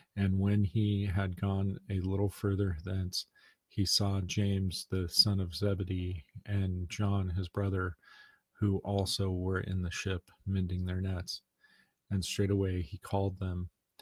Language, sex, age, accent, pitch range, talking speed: English, male, 40-59, American, 90-100 Hz, 145 wpm